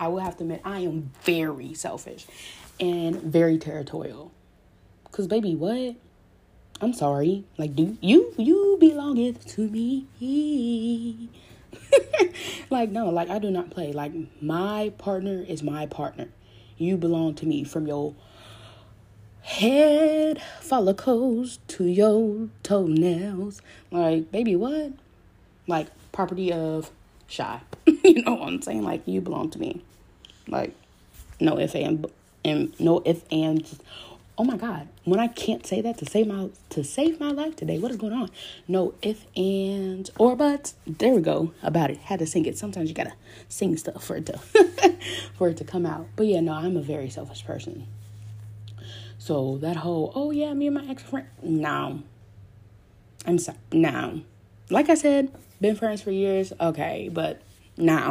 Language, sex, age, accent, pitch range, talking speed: English, female, 20-39, American, 150-230 Hz, 160 wpm